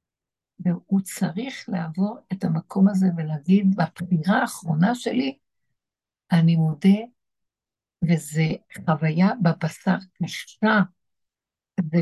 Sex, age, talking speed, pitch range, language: female, 60-79, 85 wpm, 175-210 Hz, Hebrew